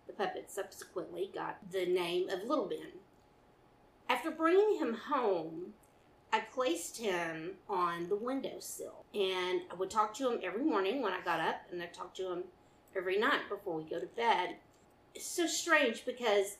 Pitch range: 205-320 Hz